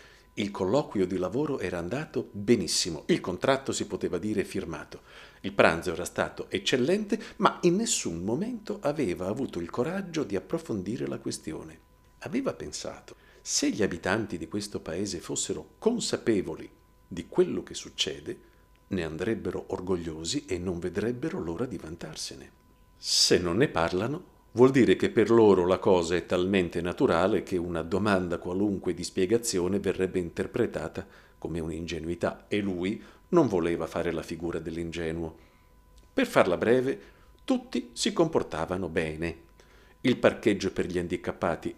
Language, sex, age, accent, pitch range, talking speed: Italian, male, 50-69, native, 85-135 Hz, 140 wpm